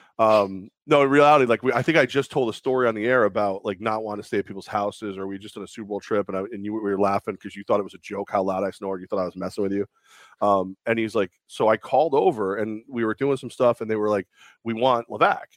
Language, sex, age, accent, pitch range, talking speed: English, male, 30-49, American, 100-120 Hz, 305 wpm